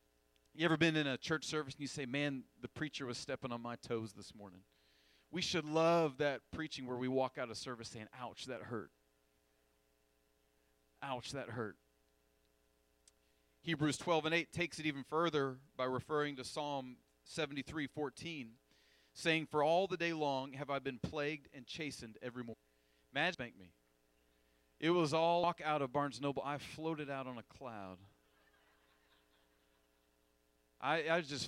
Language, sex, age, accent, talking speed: English, male, 40-59, American, 160 wpm